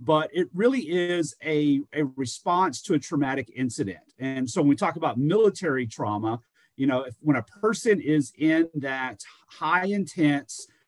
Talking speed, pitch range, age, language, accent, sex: 160 wpm, 125-155 Hz, 40-59, English, American, male